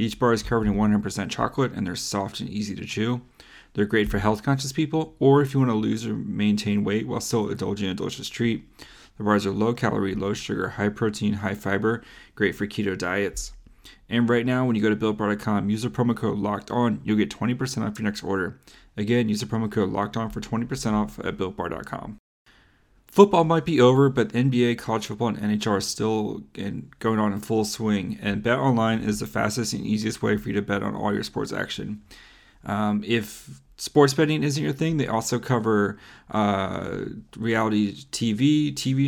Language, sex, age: English, male, 30-49